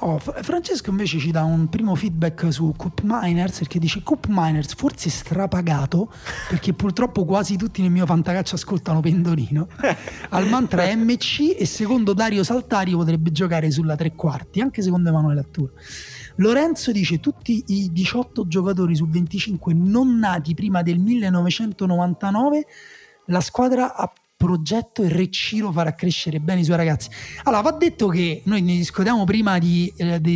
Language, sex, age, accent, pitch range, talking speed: Italian, male, 30-49, native, 165-215 Hz, 155 wpm